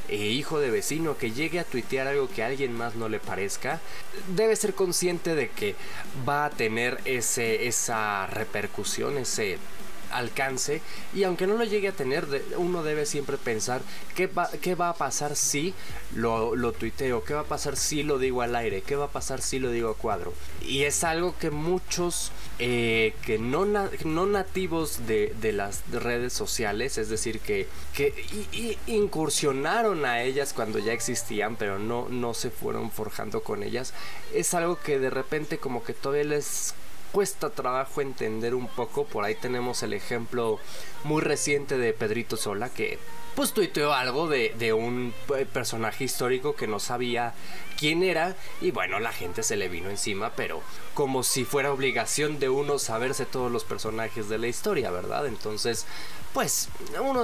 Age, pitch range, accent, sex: 20-39, 115-160 Hz, Mexican, male